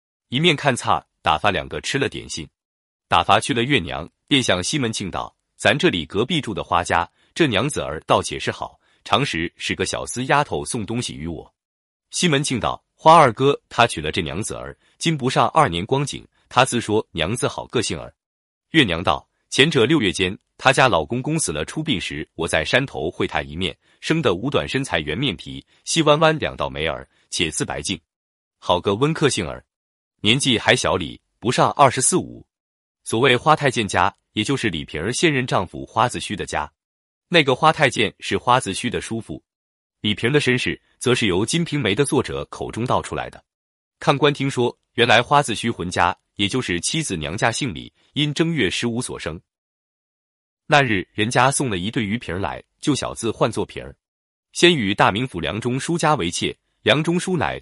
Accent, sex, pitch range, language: native, male, 100-145 Hz, Chinese